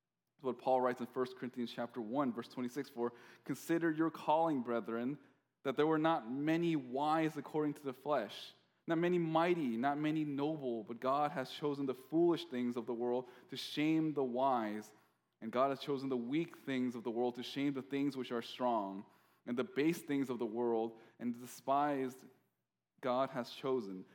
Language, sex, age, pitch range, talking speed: English, male, 20-39, 115-145 Hz, 185 wpm